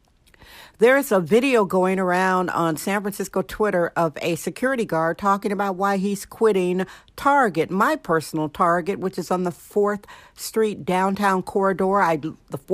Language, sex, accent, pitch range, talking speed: English, female, American, 185-220 Hz, 150 wpm